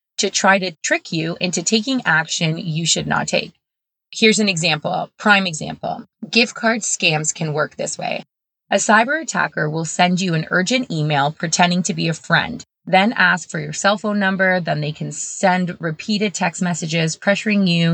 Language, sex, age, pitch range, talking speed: English, female, 20-39, 165-200 Hz, 180 wpm